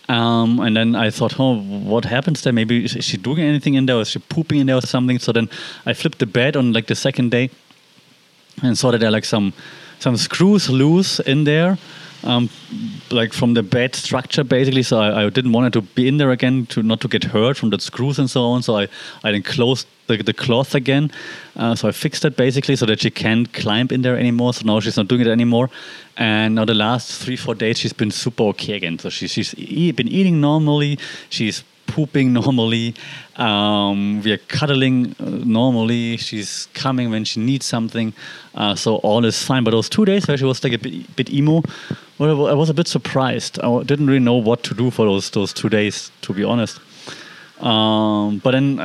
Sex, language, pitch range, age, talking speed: male, English, 115-140 Hz, 30-49, 220 wpm